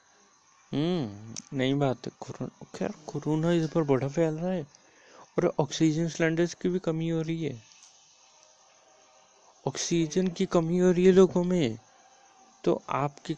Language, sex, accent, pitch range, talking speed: Hindi, male, native, 125-160 Hz, 140 wpm